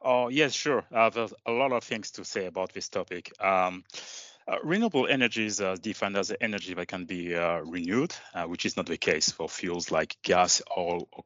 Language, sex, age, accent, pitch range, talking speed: English, male, 30-49, French, 95-115 Hz, 215 wpm